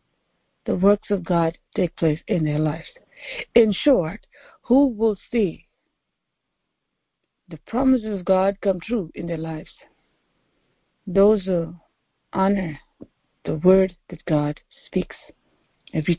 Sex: female